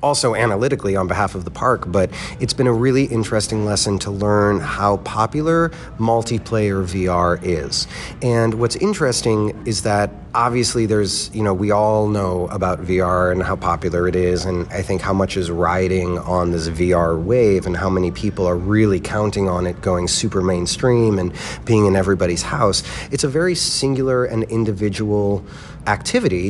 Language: English